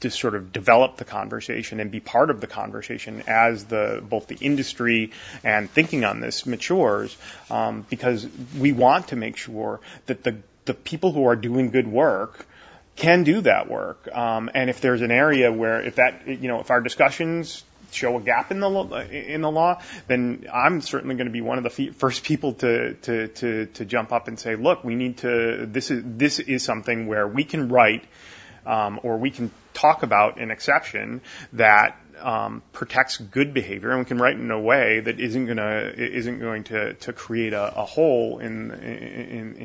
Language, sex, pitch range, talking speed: English, male, 110-130 Hz, 195 wpm